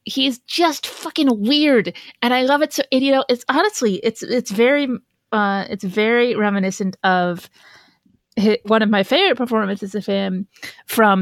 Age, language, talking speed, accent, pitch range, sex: 30-49, English, 165 wpm, American, 205-260 Hz, female